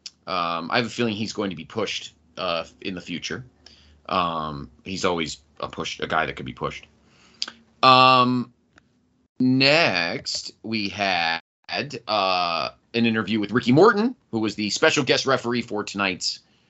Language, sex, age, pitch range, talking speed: English, male, 30-49, 105-140 Hz, 155 wpm